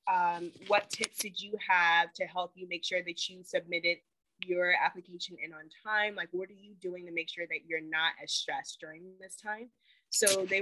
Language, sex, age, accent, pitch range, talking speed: English, female, 20-39, American, 170-205 Hz, 210 wpm